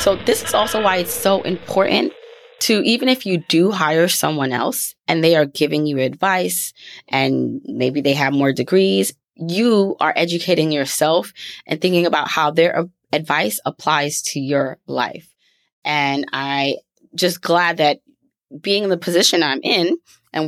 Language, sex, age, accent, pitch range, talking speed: English, female, 20-39, American, 145-180 Hz, 160 wpm